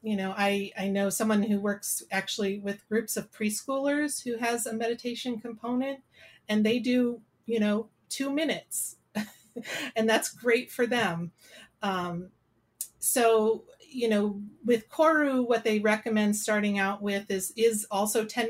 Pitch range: 200-235 Hz